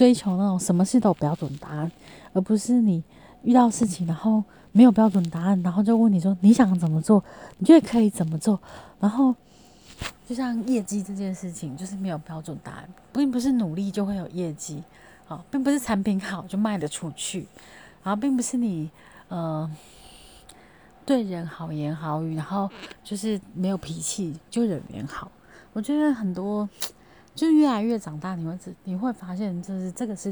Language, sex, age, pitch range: Chinese, female, 30-49, 170-220 Hz